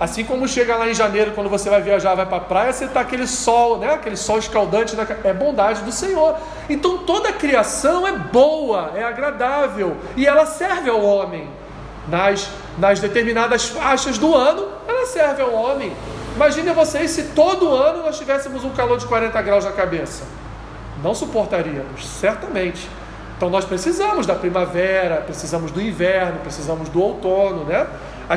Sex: male